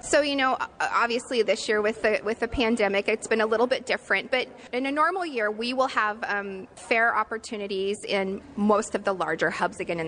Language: English